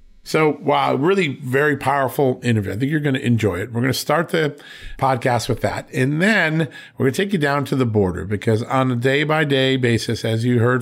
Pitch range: 110-135 Hz